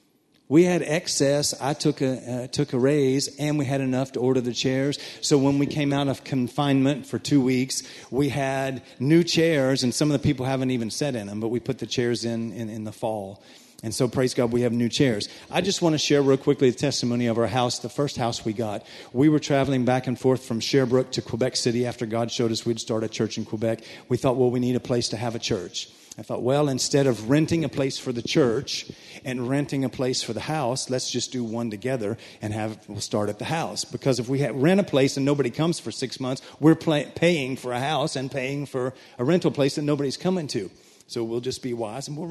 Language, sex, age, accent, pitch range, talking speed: English, male, 40-59, American, 120-140 Hz, 245 wpm